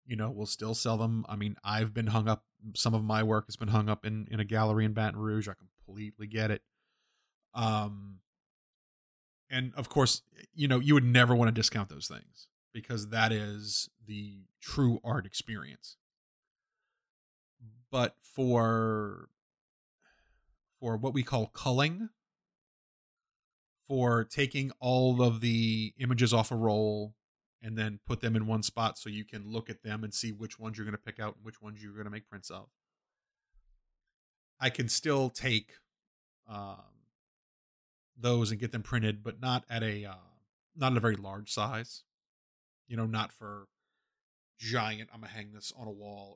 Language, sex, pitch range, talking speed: English, male, 105-120 Hz, 170 wpm